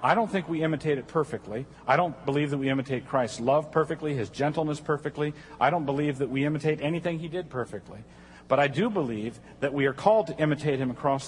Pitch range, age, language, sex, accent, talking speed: 125-155 Hz, 50-69, English, male, American, 220 wpm